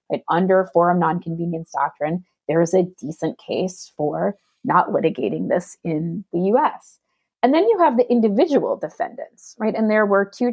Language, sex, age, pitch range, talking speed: English, female, 30-49, 165-205 Hz, 165 wpm